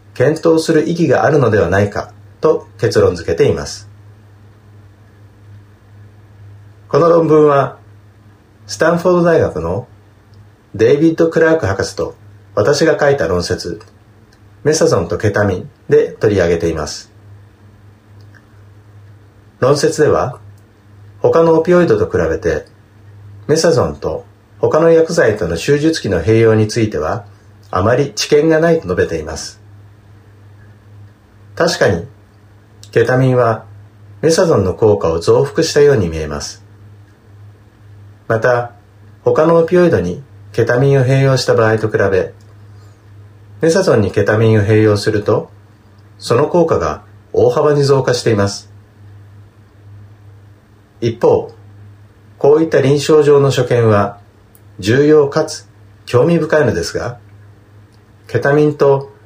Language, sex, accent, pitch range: English, male, Japanese, 105-135 Hz